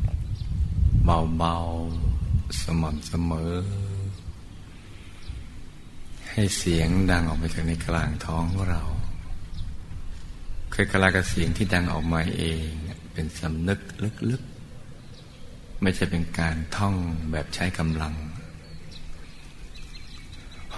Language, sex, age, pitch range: Thai, male, 60-79, 80-95 Hz